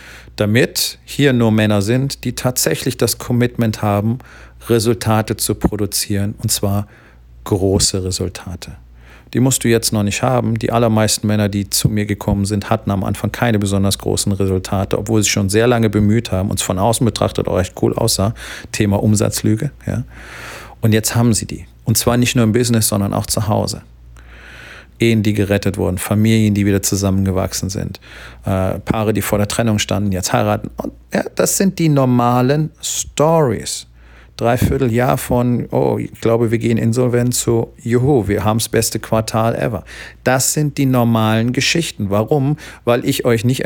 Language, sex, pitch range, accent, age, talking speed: German, male, 100-120 Hz, German, 40-59, 170 wpm